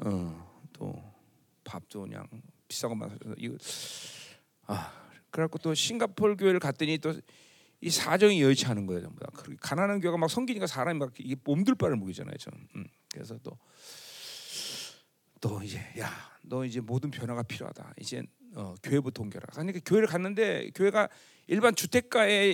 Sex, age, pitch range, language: male, 40-59, 125-200 Hz, Korean